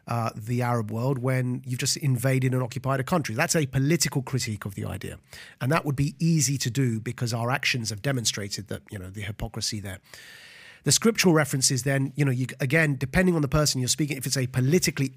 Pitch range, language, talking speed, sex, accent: 120-150 Hz, English, 210 wpm, male, British